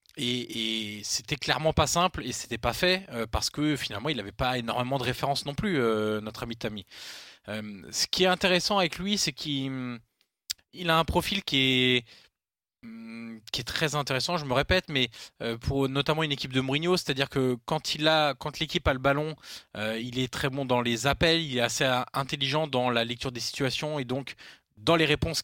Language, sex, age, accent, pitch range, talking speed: French, male, 20-39, French, 115-145 Hz, 210 wpm